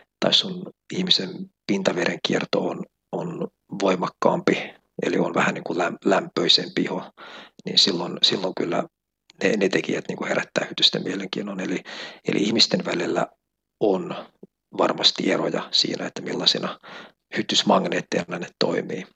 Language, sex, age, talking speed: Finnish, male, 50-69, 120 wpm